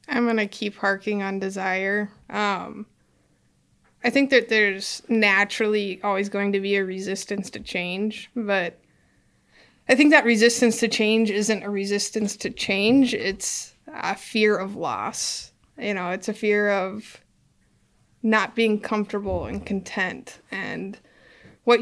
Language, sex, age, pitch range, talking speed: English, female, 20-39, 200-220 Hz, 140 wpm